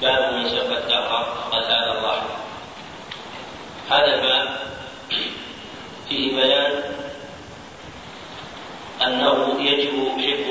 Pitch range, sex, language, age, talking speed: 125-135 Hz, male, Arabic, 40-59, 75 wpm